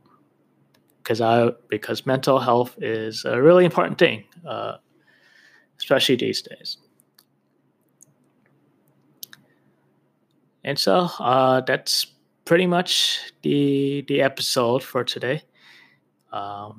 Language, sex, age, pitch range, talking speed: English, male, 20-39, 115-140 Hz, 90 wpm